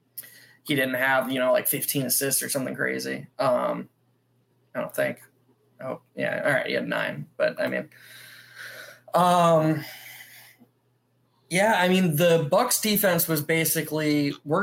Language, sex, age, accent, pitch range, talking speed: English, male, 20-39, American, 135-160 Hz, 145 wpm